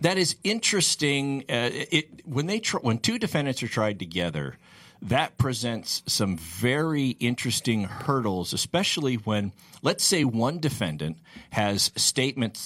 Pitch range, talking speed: 100-140 Hz, 135 wpm